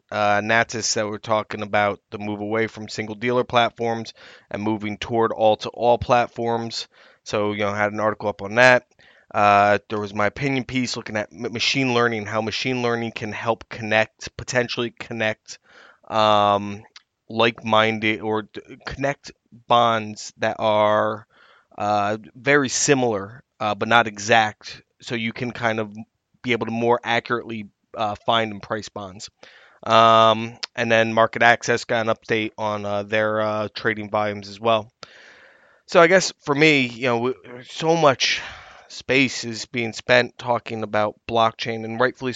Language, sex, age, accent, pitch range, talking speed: English, male, 20-39, American, 105-120 Hz, 155 wpm